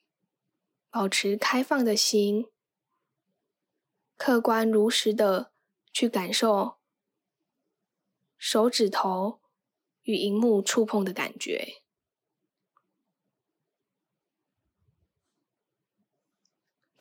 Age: 10-29